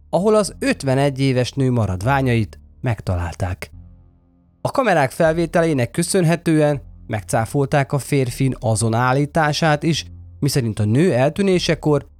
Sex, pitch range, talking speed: male, 100-145 Hz, 105 wpm